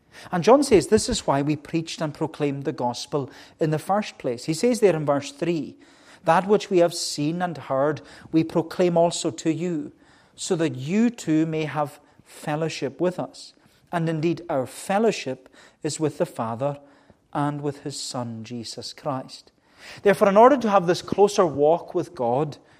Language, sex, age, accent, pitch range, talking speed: English, male, 40-59, British, 135-185 Hz, 175 wpm